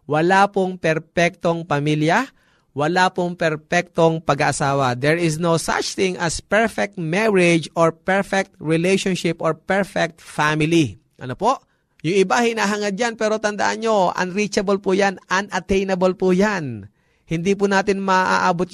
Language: Filipino